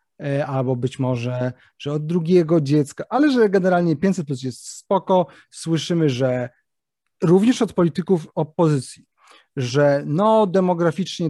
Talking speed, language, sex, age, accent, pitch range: 120 wpm, Polish, male, 30-49, native, 140-190 Hz